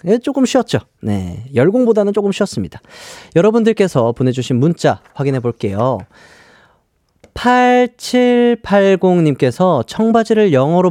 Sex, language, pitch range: male, Korean, 120-200 Hz